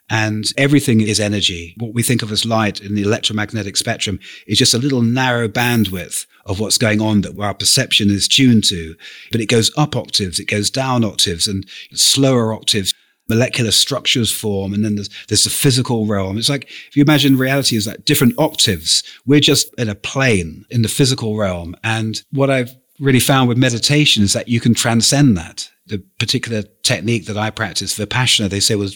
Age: 40-59